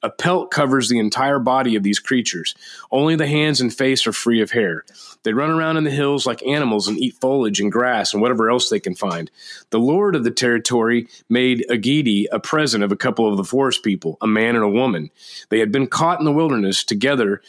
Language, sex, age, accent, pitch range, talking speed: English, male, 30-49, American, 110-135 Hz, 225 wpm